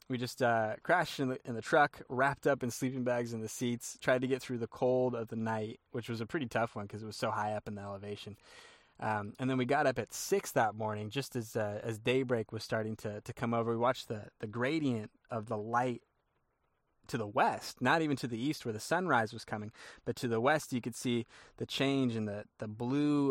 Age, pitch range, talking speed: 20-39, 110-130 Hz, 245 wpm